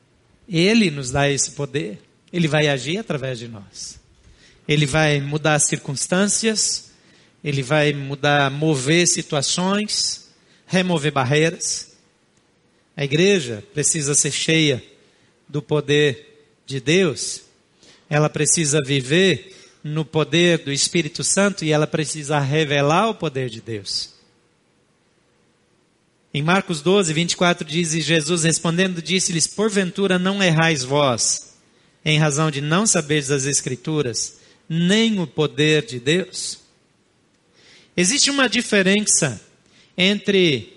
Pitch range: 145-185 Hz